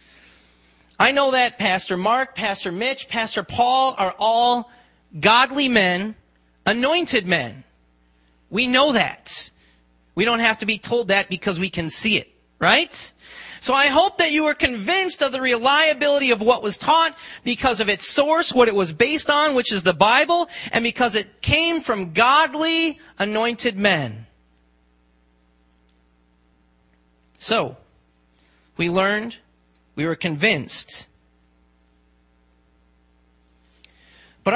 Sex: male